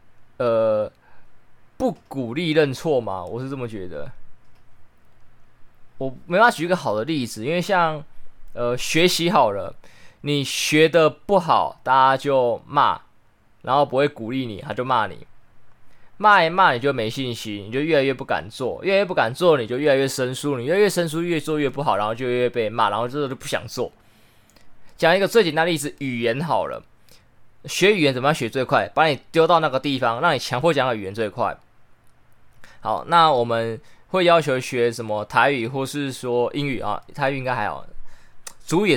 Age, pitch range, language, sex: 20-39, 120-155 Hz, Chinese, male